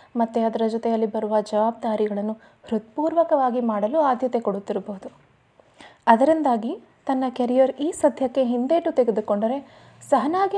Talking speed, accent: 95 wpm, native